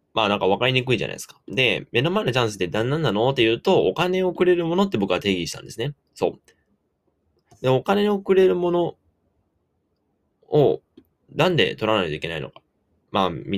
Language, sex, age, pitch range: Japanese, male, 20-39, 100-165 Hz